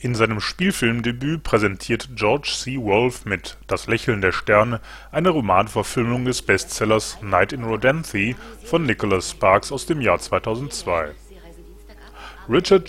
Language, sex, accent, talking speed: German, male, German, 125 wpm